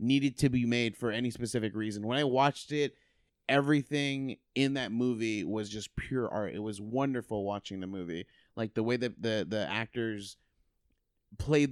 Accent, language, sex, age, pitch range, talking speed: American, English, male, 30-49, 110-140 Hz, 175 wpm